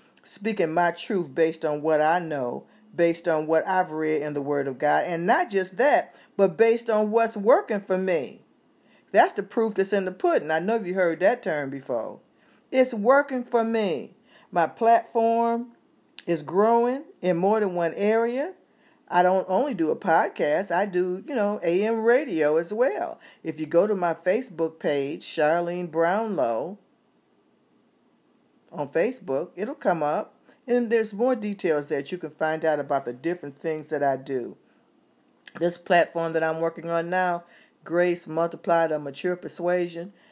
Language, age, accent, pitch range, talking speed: English, 50-69, American, 160-220 Hz, 165 wpm